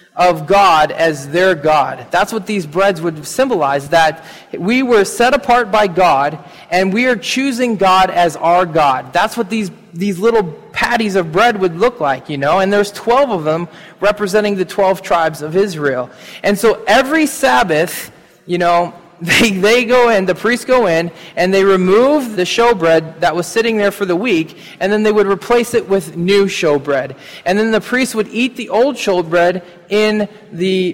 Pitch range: 170-220 Hz